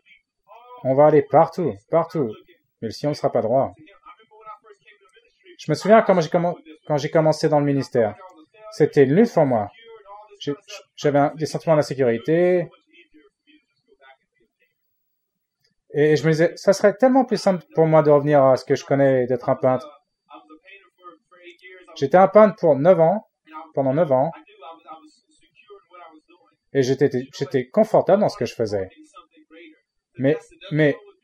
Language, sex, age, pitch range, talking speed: English, male, 30-49, 140-200 Hz, 150 wpm